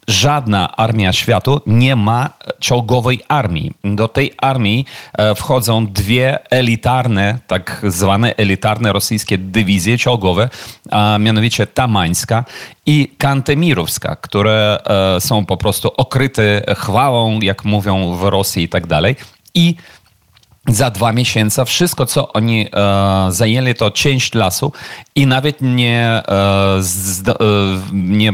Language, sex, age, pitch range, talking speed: Polish, male, 40-59, 100-125 Hz, 110 wpm